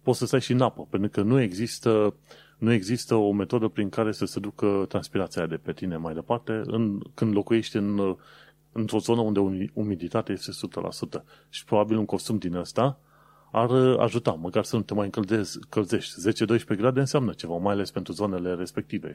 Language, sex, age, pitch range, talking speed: Romanian, male, 30-49, 100-130 Hz, 180 wpm